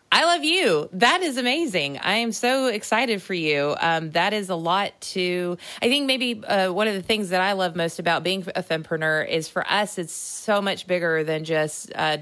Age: 30-49